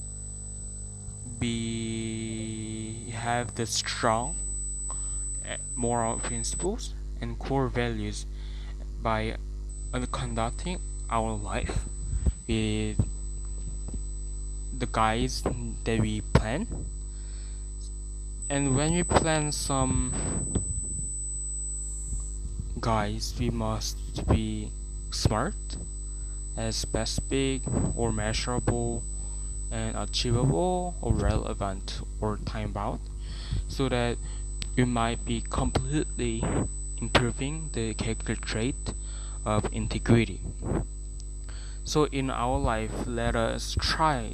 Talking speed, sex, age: 80 wpm, male, 10-29